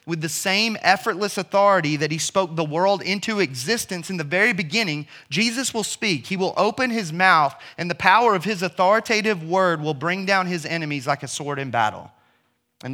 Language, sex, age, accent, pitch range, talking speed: English, male, 30-49, American, 120-170 Hz, 195 wpm